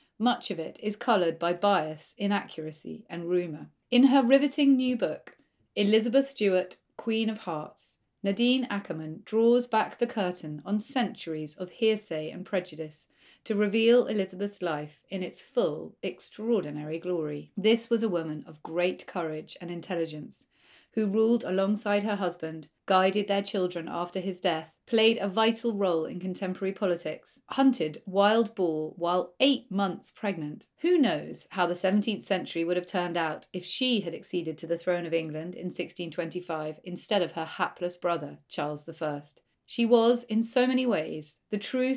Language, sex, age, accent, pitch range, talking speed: English, female, 30-49, British, 170-220 Hz, 160 wpm